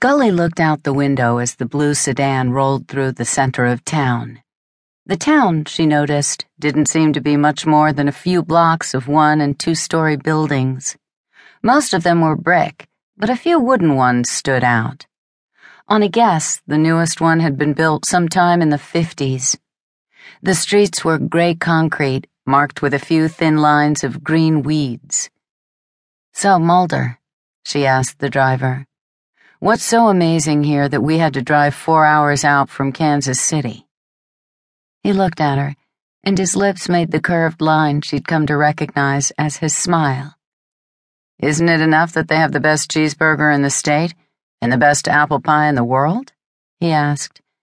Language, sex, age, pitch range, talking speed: English, female, 40-59, 140-165 Hz, 170 wpm